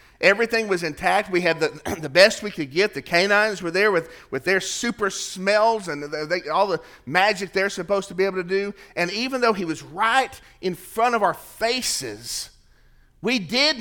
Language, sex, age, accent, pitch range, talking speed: English, male, 40-59, American, 145-210 Hz, 195 wpm